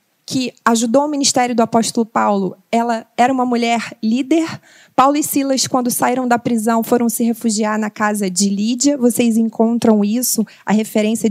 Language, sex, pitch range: Portuguese, female, 225-285 Hz